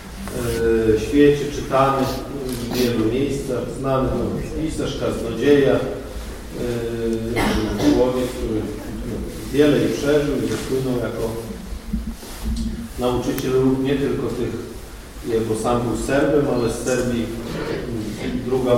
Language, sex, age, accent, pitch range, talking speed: Polish, male, 40-59, native, 110-130 Hz, 100 wpm